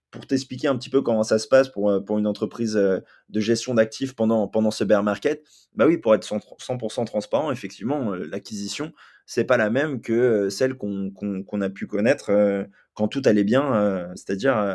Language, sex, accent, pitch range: French, male, French, 100-120 Hz